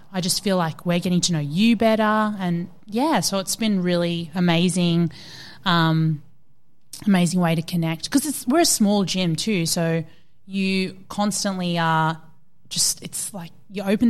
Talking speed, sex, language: 160 wpm, female, English